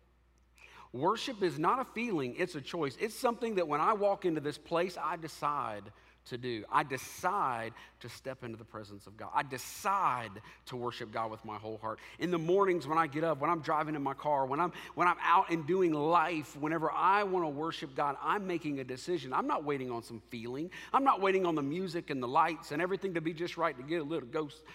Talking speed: 235 wpm